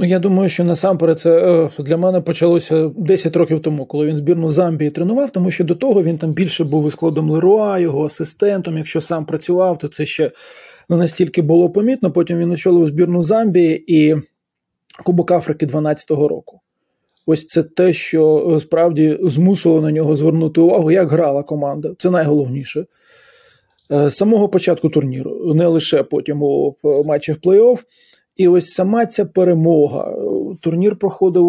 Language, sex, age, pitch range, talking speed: Ukrainian, male, 20-39, 155-180 Hz, 150 wpm